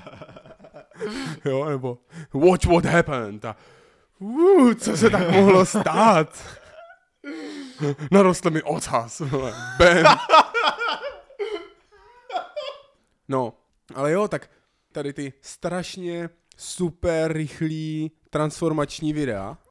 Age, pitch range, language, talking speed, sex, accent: 20-39, 125-170 Hz, Czech, 80 wpm, male, native